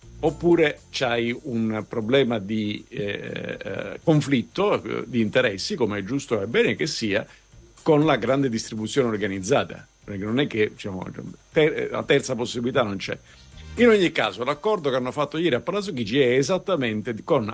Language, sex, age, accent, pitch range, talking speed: Italian, male, 50-69, native, 110-150 Hz, 160 wpm